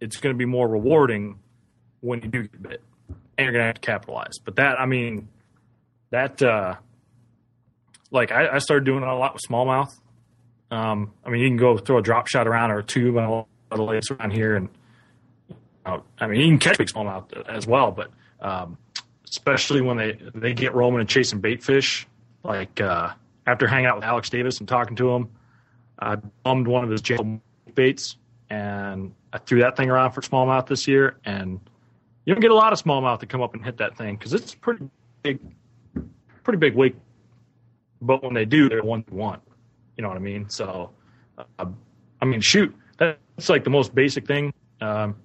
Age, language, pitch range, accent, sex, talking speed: 30-49, English, 110-130 Hz, American, male, 205 wpm